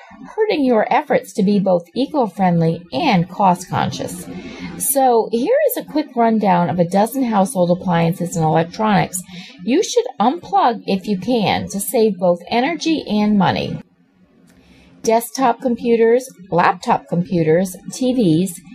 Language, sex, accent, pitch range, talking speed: English, female, American, 175-240 Hz, 125 wpm